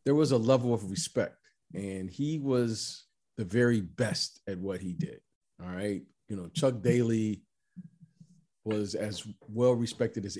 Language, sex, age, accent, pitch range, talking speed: English, male, 40-59, American, 105-130 Hz, 155 wpm